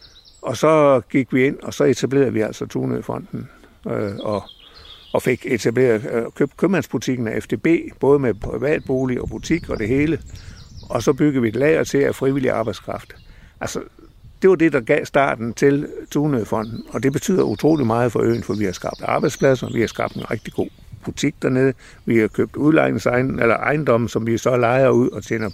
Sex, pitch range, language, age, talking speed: male, 110-145 Hz, Danish, 60-79, 185 wpm